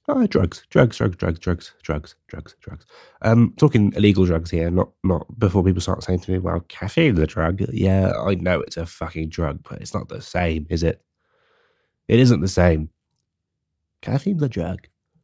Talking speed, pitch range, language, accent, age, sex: 180 wpm, 85-110 Hz, English, British, 20-39, male